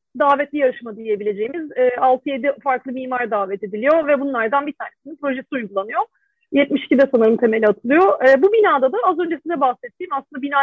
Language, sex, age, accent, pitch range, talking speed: Turkish, female, 40-59, native, 250-325 Hz, 160 wpm